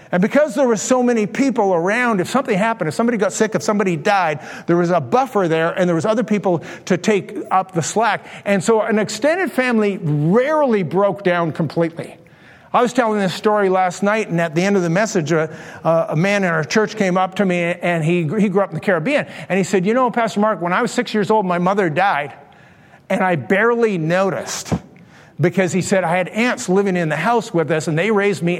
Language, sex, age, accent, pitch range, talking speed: English, male, 50-69, American, 170-220 Hz, 230 wpm